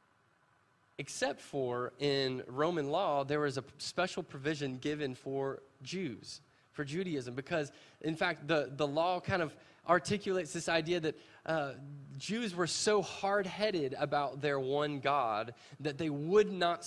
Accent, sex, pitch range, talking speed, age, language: American, male, 135-175 Hz, 140 wpm, 20-39, English